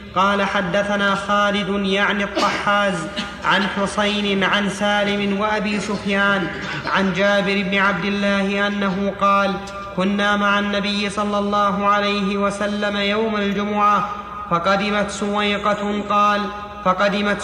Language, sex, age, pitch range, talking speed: Arabic, male, 30-49, 200-210 Hz, 105 wpm